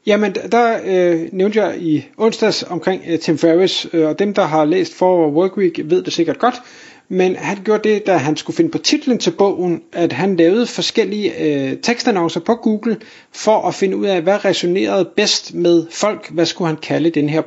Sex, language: male, Danish